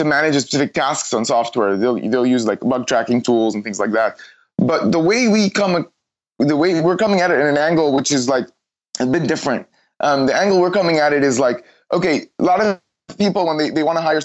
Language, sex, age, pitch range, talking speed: English, male, 20-39, 130-160 Hz, 235 wpm